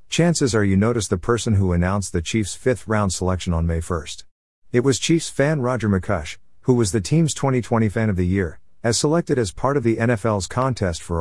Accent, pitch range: American, 90-115 Hz